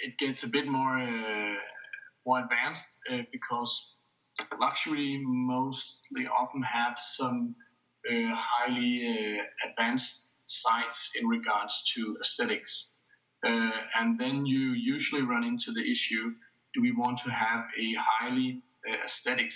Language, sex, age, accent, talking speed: English, male, 30-49, Danish, 130 wpm